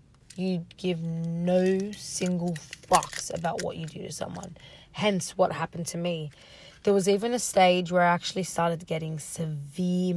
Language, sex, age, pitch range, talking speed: English, female, 20-39, 160-185 Hz, 160 wpm